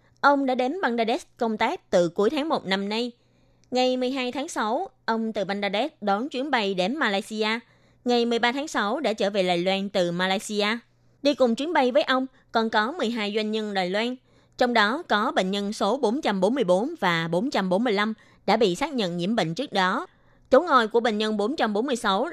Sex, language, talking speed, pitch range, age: female, Vietnamese, 190 wpm, 195-250 Hz, 20-39